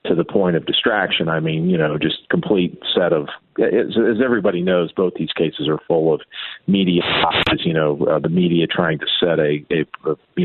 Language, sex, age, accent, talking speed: English, male, 50-69, American, 205 wpm